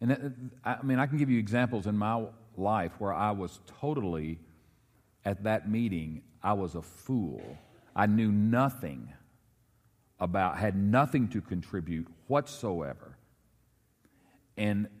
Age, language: 40-59, English